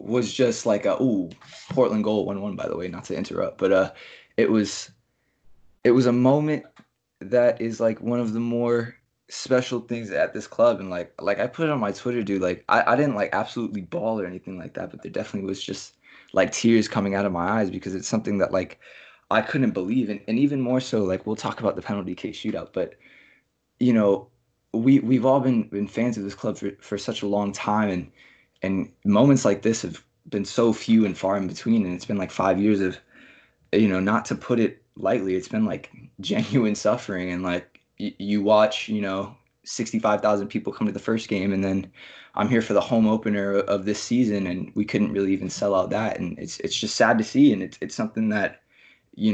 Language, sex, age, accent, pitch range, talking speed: English, male, 20-39, American, 100-120 Hz, 225 wpm